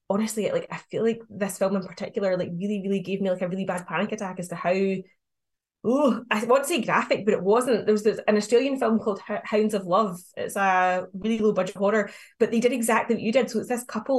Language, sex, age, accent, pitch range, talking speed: English, female, 20-39, British, 200-235 Hz, 250 wpm